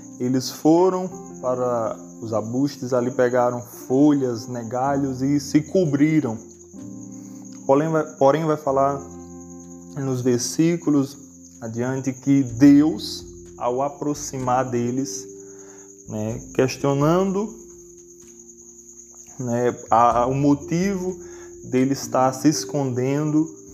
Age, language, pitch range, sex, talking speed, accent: 20-39, Portuguese, 115-140 Hz, male, 85 wpm, Brazilian